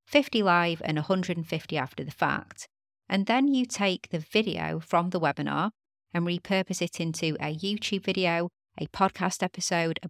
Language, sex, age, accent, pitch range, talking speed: English, female, 30-49, British, 155-190 Hz, 160 wpm